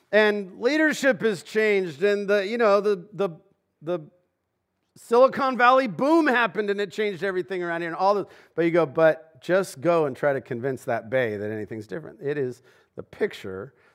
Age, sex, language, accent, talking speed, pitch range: 50-69, male, English, American, 185 wpm, 115-180 Hz